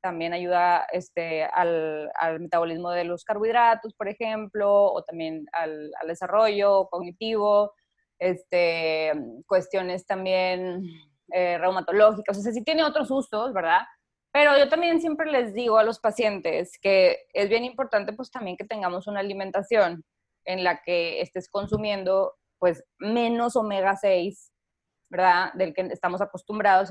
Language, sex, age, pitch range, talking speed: Spanish, female, 20-39, 175-230 Hz, 135 wpm